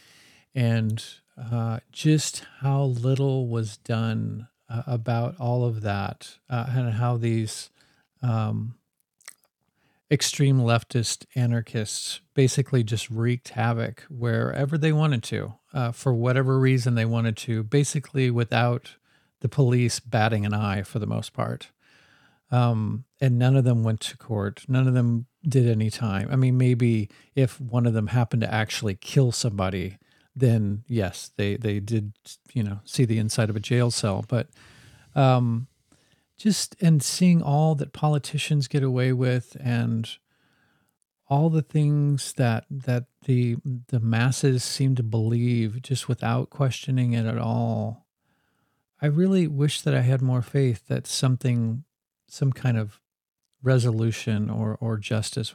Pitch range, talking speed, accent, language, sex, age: 115-135 Hz, 145 wpm, American, English, male, 40-59